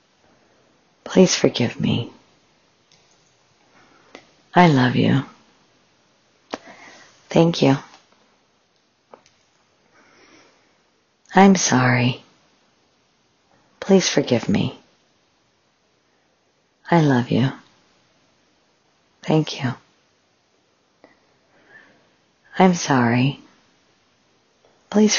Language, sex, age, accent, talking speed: English, female, 50-69, American, 50 wpm